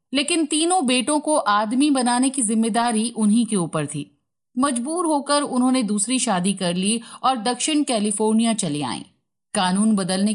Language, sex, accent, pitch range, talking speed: Hindi, female, native, 200-275 Hz, 150 wpm